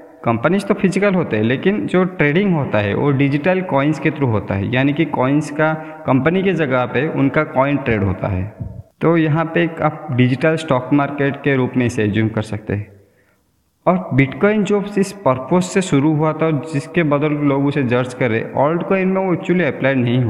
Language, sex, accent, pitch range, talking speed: Hindi, male, native, 115-160 Hz, 195 wpm